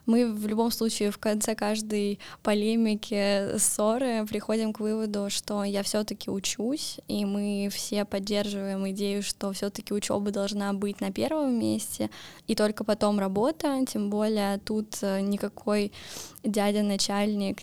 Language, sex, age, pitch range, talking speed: Russian, female, 10-29, 205-230 Hz, 135 wpm